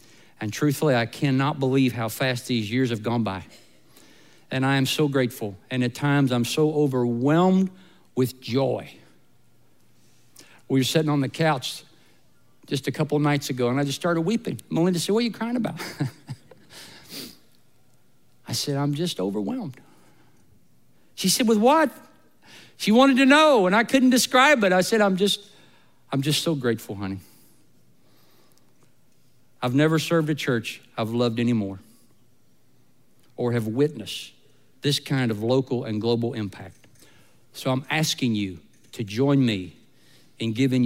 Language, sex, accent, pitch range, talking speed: English, male, American, 115-150 Hz, 150 wpm